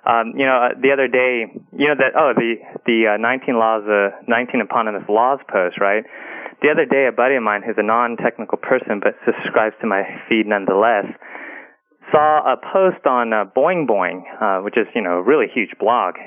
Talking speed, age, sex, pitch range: 205 wpm, 20-39, male, 110-150 Hz